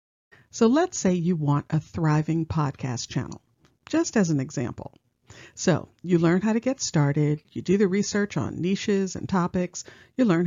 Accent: American